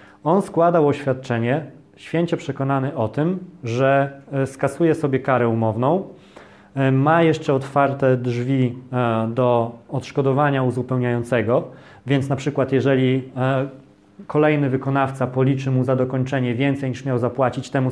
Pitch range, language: 125-150 Hz, Polish